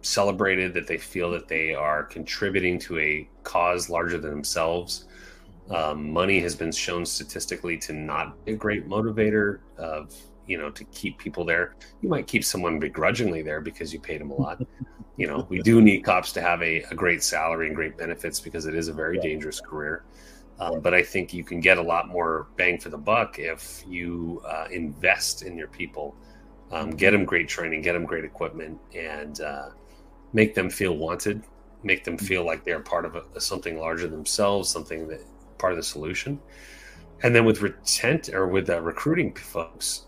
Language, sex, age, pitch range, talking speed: English, male, 30-49, 80-95 Hz, 195 wpm